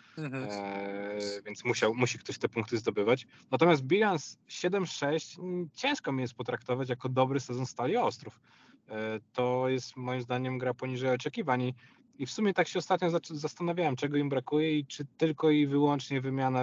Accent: native